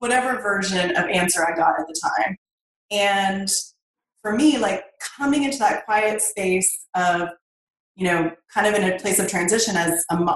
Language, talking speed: English, 175 wpm